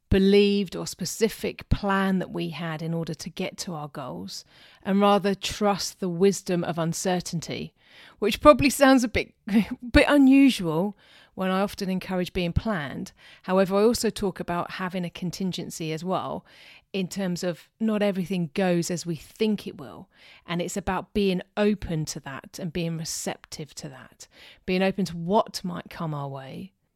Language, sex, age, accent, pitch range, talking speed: English, female, 30-49, British, 170-205 Hz, 165 wpm